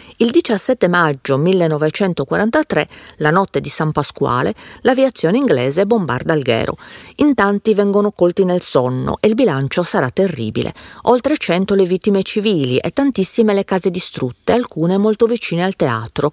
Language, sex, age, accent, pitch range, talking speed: Italian, female, 40-59, native, 150-220 Hz, 145 wpm